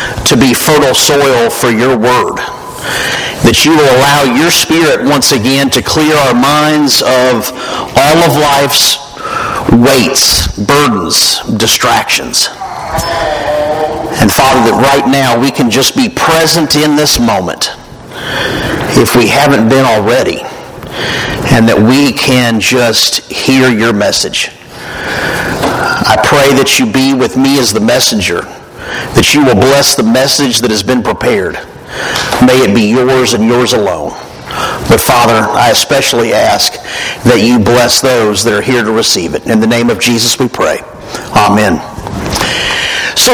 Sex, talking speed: male, 145 wpm